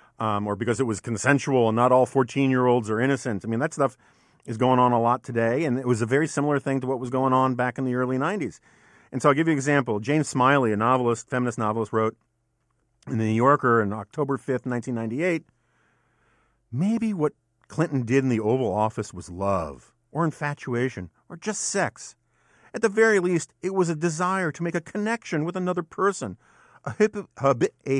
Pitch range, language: 115-155 Hz, English